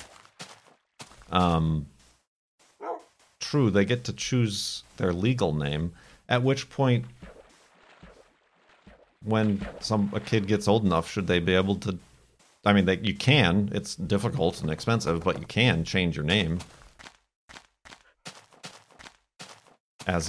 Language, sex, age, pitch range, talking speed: English, male, 50-69, 85-110 Hz, 120 wpm